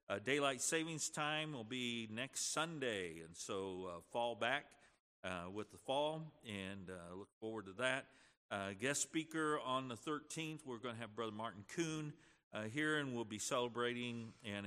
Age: 50-69